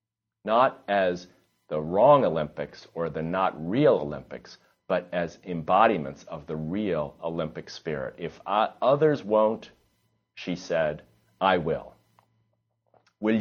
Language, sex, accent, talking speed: English, male, American, 115 wpm